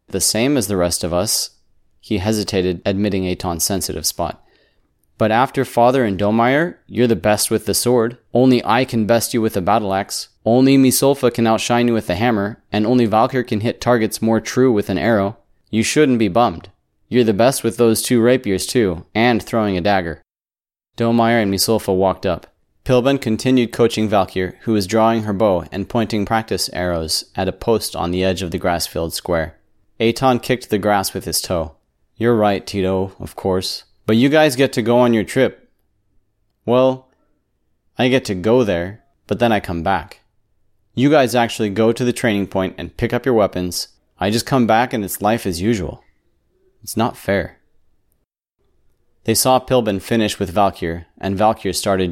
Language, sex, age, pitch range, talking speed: English, male, 30-49, 95-115 Hz, 190 wpm